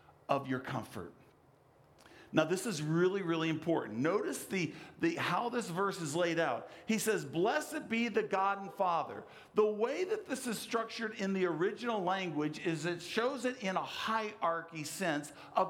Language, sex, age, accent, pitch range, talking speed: English, male, 50-69, American, 190-270 Hz, 165 wpm